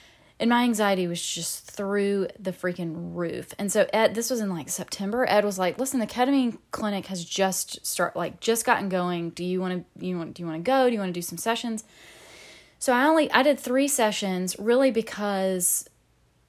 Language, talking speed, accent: English, 210 wpm, American